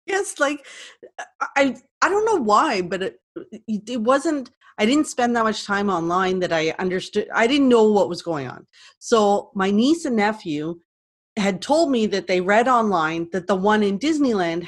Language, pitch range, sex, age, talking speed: English, 180-240 Hz, female, 30-49, 185 wpm